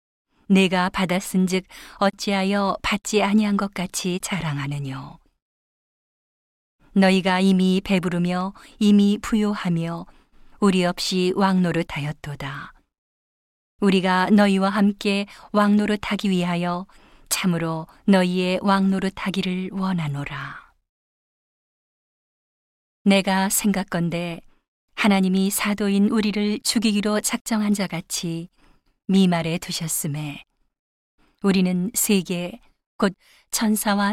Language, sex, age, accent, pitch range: Korean, female, 40-59, native, 180-205 Hz